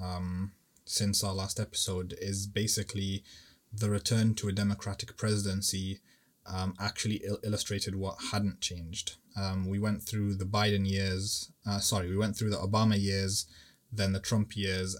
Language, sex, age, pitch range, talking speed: English, male, 20-39, 100-105 Hz, 155 wpm